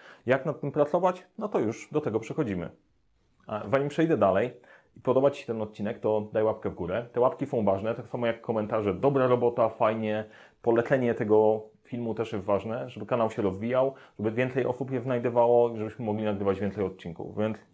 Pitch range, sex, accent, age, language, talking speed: 105-130 Hz, male, native, 30-49, Polish, 195 wpm